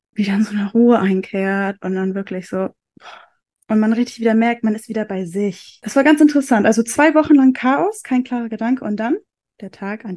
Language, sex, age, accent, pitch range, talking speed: German, female, 10-29, German, 210-255 Hz, 220 wpm